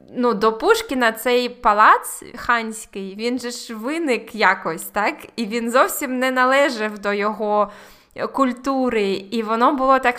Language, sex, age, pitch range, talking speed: Ukrainian, female, 20-39, 210-250 Hz, 140 wpm